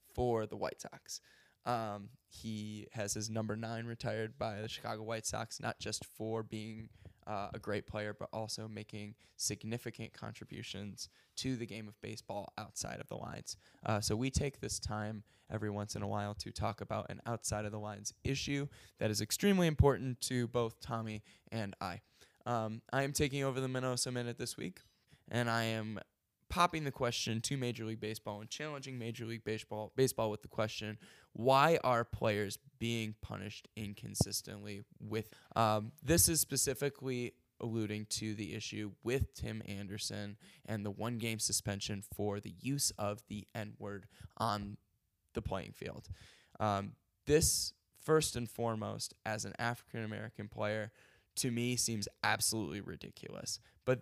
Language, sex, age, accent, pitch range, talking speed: English, male, 10-29, American, 105-120 Hz, 160 wpm